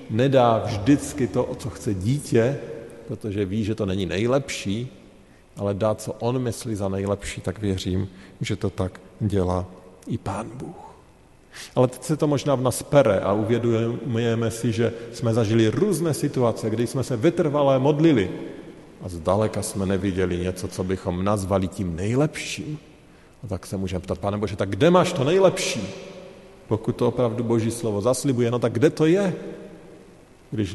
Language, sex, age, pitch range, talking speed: Slovak, male, 40-59, 100-125 Hz, 165 wpm